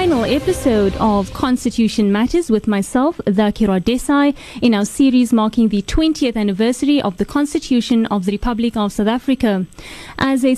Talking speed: 155 wpm